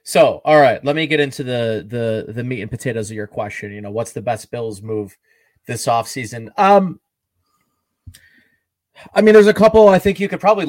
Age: 30-49